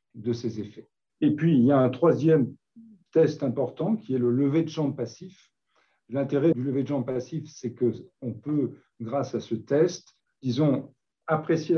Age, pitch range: 50-69, 120-150 Hz